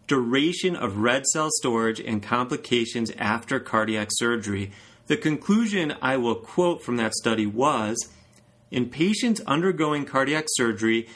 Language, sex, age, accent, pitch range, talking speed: English, male, 30-49, American, 115-160 Hz, 130 wpm